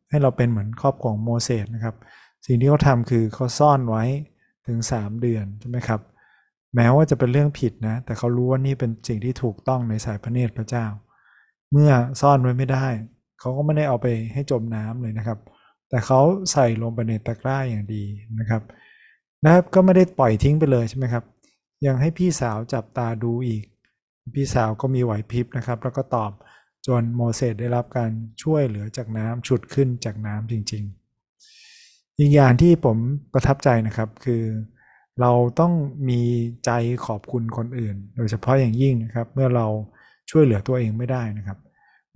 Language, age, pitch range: Thai, 20-39, 115-135 Hz